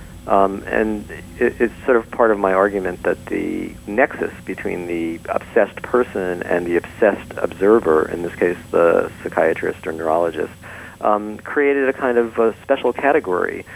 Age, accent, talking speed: 50-69, American, 155 wpm